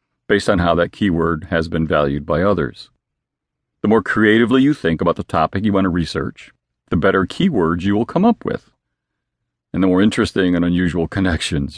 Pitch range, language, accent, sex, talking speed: 85-105 Hz, English, American, male, 190 wpm